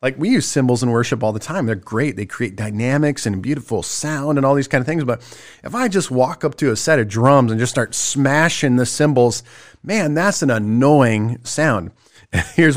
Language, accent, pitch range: English, American, 115-150 Hz